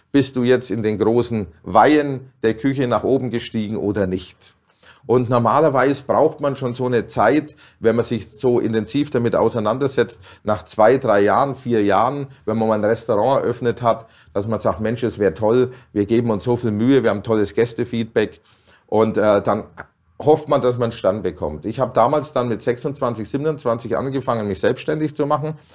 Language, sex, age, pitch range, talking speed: German, male, 40-59, 110-130 Hz, 190 wpm